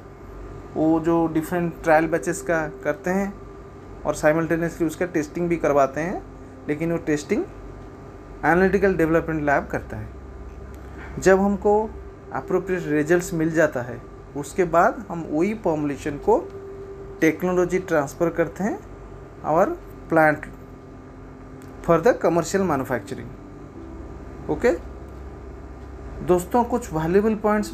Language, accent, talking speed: Hindi, native, 110 wpm